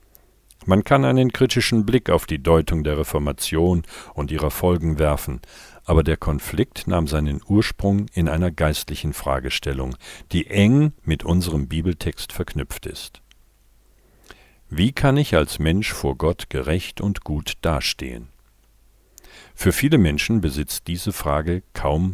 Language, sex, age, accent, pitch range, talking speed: German, male, 50-69, German, 75-95 Hz, 135 wpm